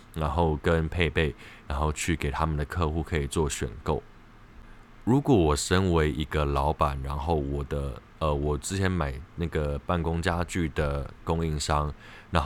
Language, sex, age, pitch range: Chinese, male, 20-39, 75-90 Hz